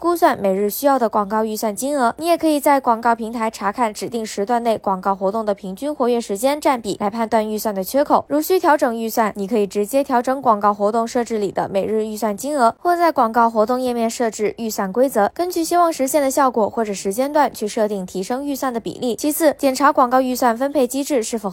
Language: Chinese